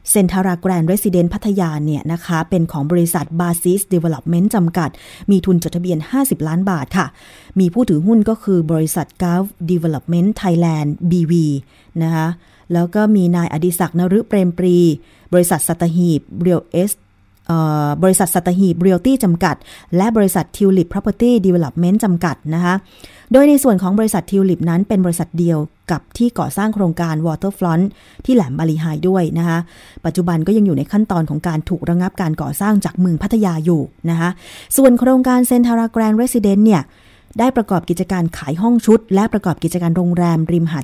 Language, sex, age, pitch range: Thai, female, 20-39, 165-200 Hz